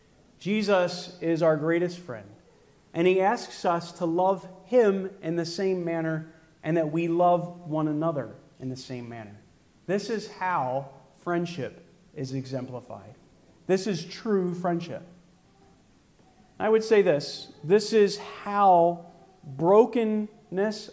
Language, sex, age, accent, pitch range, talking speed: English, male, 40-59, American, 160-205 Hz, 125 wpm